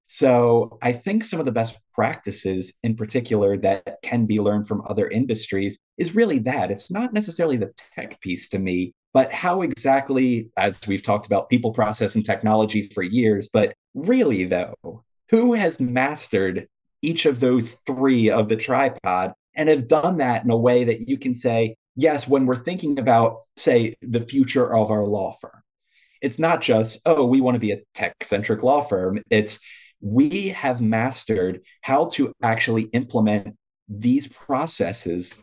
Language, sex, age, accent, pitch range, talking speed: English, male, 30-49, American, 105-135 Hz, 170 wpm